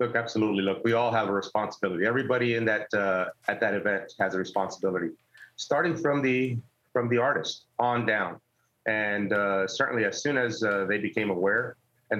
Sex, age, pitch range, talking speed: male, 30-49, 105-120 Hz, 180 wpm